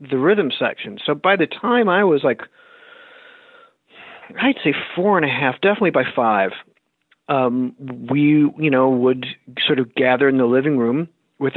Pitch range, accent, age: 130-150 Hz, American, 40-59